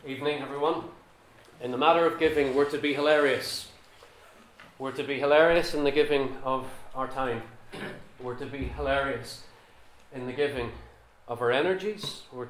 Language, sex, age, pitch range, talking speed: English, male, 30-49, 125-150 Hz, 155 wpm